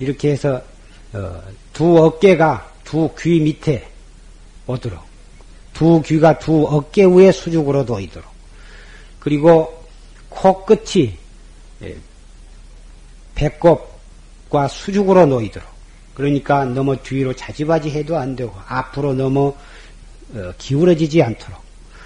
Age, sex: 40-59, male